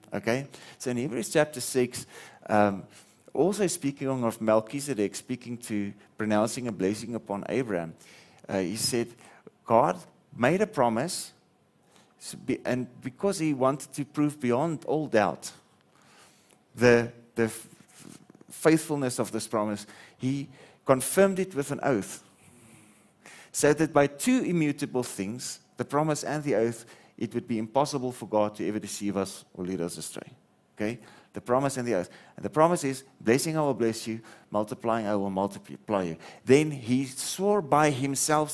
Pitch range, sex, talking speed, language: 110-140 Hz, male, 145 wpm, English